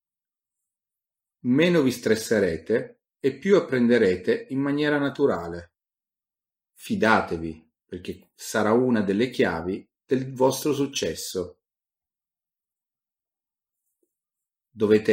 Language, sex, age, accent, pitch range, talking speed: Italian, male, 40-59, native, 90-140 Hz, 75 wpm